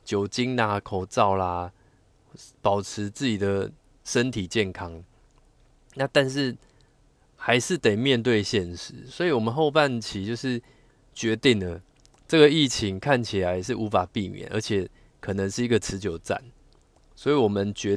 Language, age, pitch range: Chinese, 20-39, 100-125 Hz